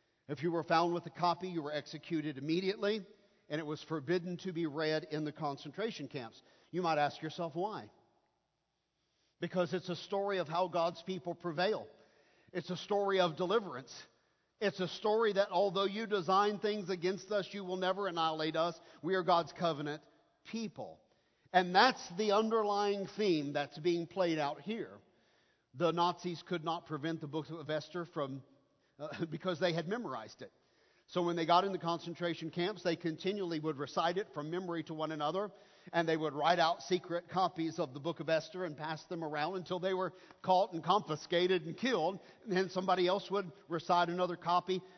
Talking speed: 180 wpm